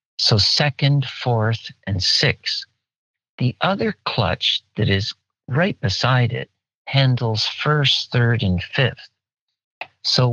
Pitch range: 115-145 Hz